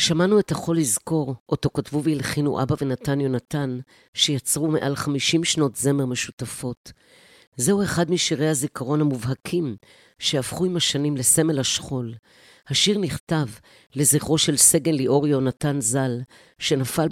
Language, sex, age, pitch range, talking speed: Hebrew, female, 50-69, 125-155 Hz, 125 wpm